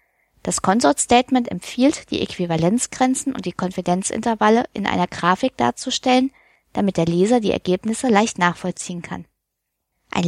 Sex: female